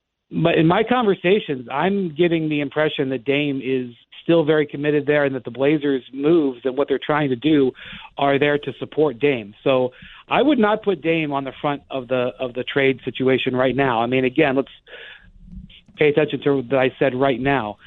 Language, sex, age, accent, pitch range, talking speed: English, male, 50-69, American, 130-160 Hz, 200 wpm